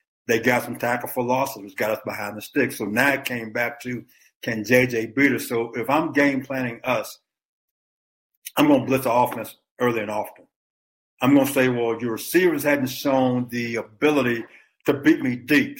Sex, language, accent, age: male, English, American, 60-79